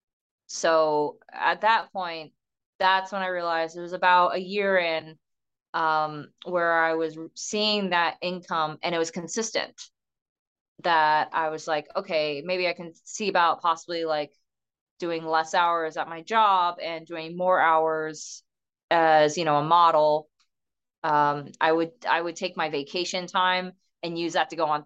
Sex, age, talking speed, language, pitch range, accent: female, 20-39, 160 wpm, English, 155-185 Hz, American